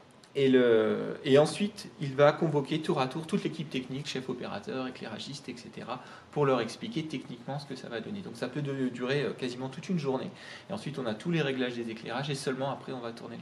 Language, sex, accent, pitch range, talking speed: French, male, French, 125-155 Hz, 220 wpm